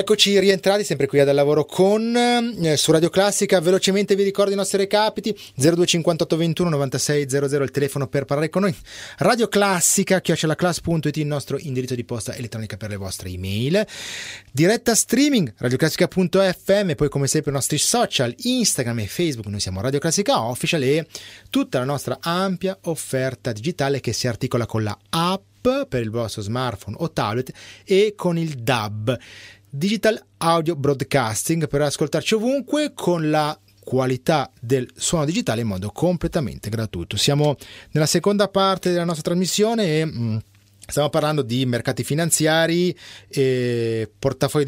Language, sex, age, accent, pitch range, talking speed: Italian, male, 30-49, native, 125-180 Hz, 145 wpm